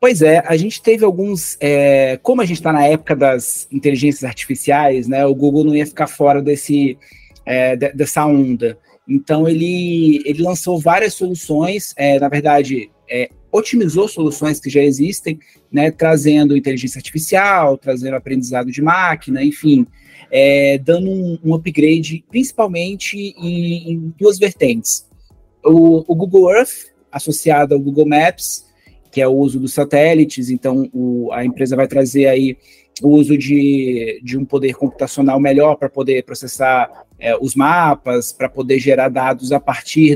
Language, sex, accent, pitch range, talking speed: Portuguese, male, Brazilian, 135-165 Hz, 140 wpm